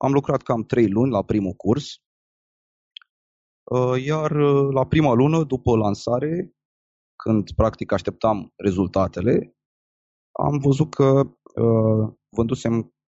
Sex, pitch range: male, 95-120 Hz